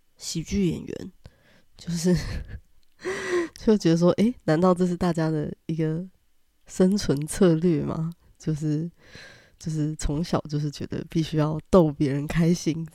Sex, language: female, Chinese